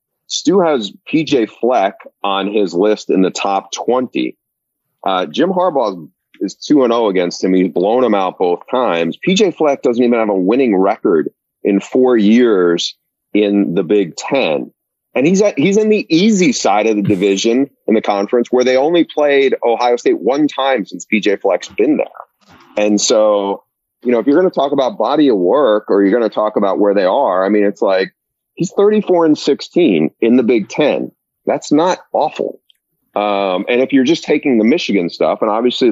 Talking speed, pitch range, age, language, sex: 195 wpm, 100-130 Hz, 30-49, English, male